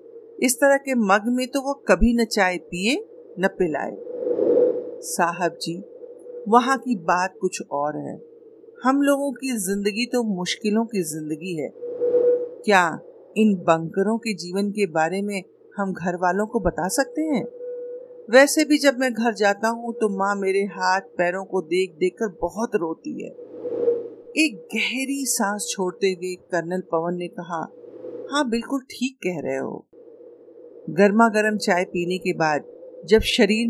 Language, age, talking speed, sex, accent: Hindi, 50-69, 150 wpm, female, native